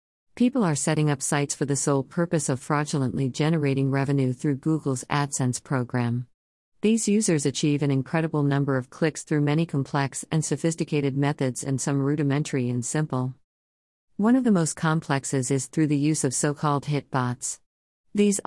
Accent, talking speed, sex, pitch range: American, 160 wpm, female, 130-160 Hz